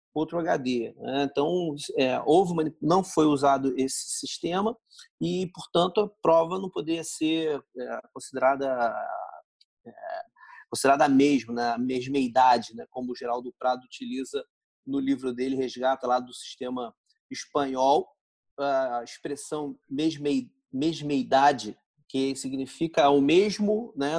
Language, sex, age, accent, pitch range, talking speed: Portuguese, male, 40-59, Brazilian, 140-225 Hz, 105 wpm